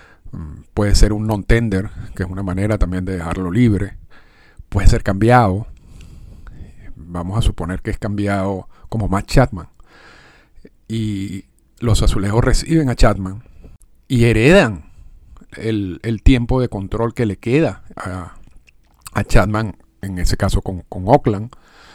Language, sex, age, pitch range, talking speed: Spanish, male, 50-69, 95-120 Hz, 135 wpm